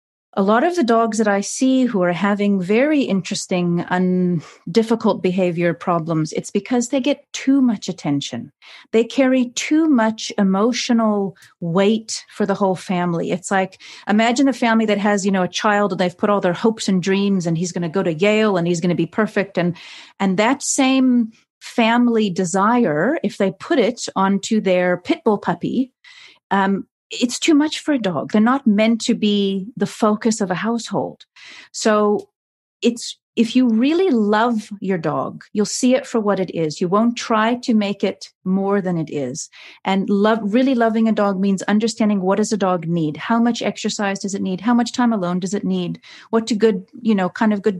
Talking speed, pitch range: 195 wpm, 185-230 Hz